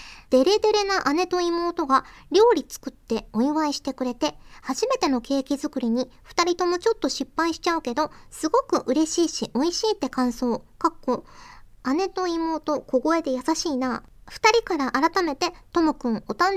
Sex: male